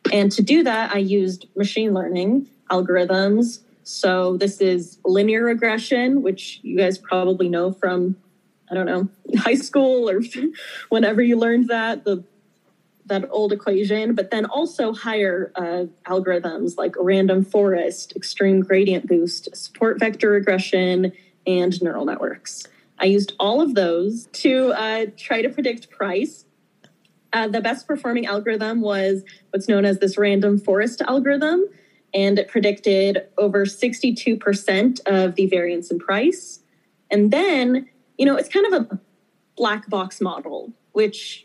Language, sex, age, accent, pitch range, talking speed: English, female, 10-29, American, 190-230 Hz, 140 wpm